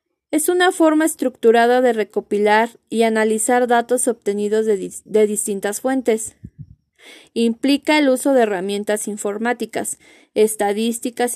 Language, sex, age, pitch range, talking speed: Spanish, female, 20-39, 215-270 Hz, 110 wpm